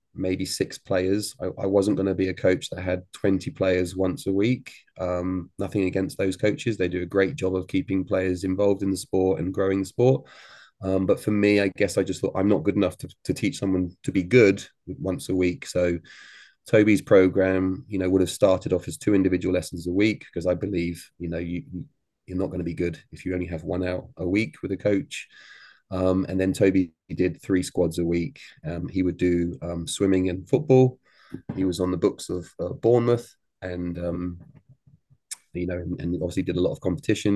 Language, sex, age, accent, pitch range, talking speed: English, male, 30-49, British, 90-100 Hz, 220 wpm